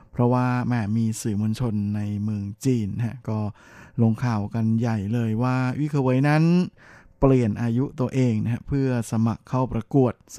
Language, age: Thai, 20-39